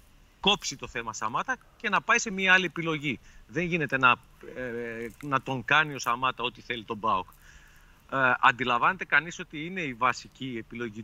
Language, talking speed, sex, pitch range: Greek, 175 wpm, male, 115-150 Hz